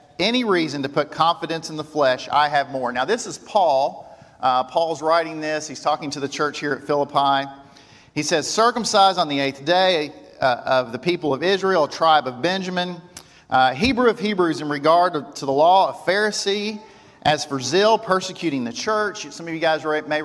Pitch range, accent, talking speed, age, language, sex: 145-185 Hz, American, 195 wpm, 40-59, English, male